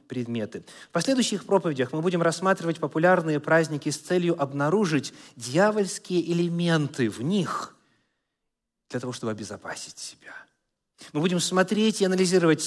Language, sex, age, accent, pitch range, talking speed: Russian, male, 30-49, native, 130-180 Hz, 120 wpm